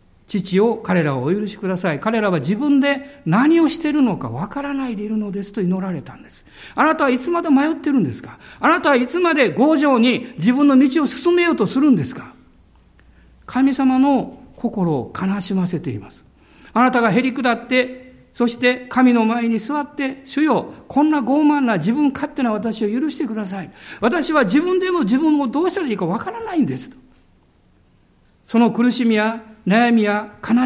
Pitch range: 205-285 Hz